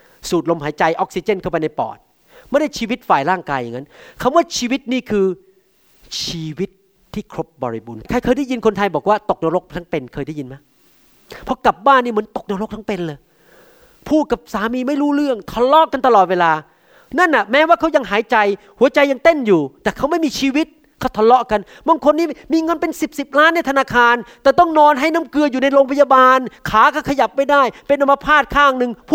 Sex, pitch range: male, 180-275 Hz